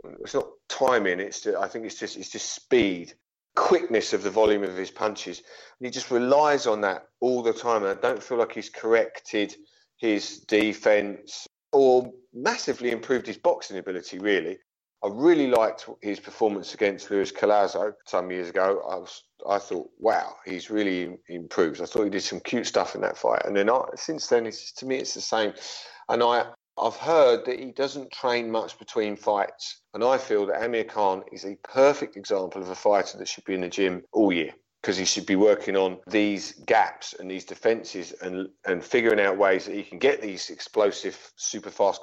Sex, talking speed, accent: male, 200 wpm, British